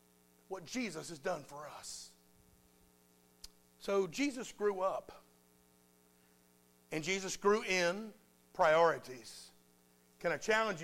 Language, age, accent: English, 50-69, American